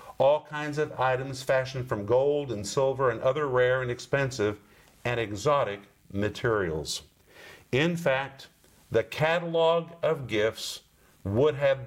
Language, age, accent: English, 50-69, American